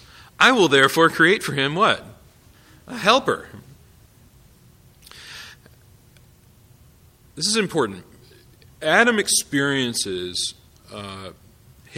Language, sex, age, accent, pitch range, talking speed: English, male, 40-59, American, 105-140 Hz, 75 wpm